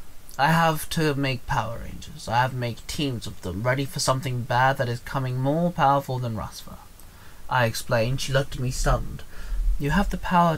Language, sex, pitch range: English, male, 115-145 Hz